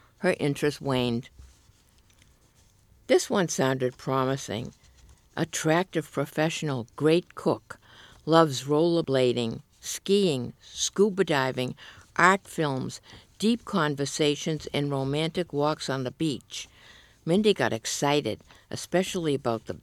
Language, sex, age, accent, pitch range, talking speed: English, female, 60-79, American, 125-160 Hz, 95 wpm